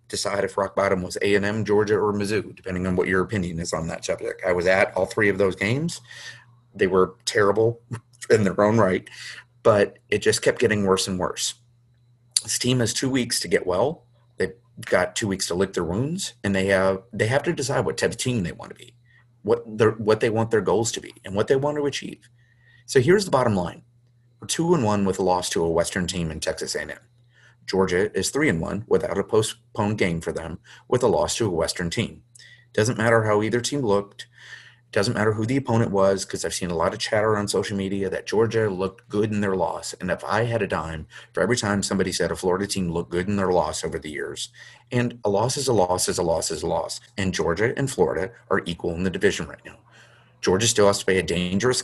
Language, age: English, 30-49